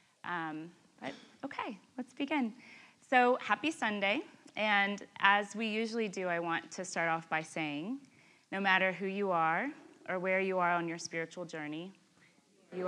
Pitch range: 165-210 Hz